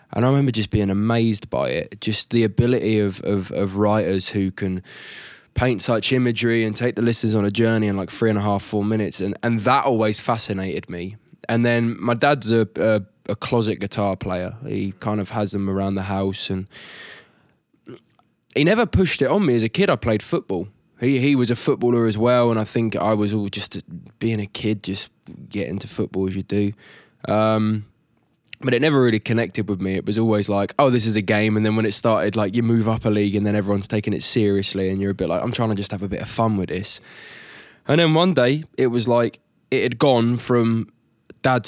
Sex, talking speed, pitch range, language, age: male, 230 wpm, 100-115 Hz, English, 20-39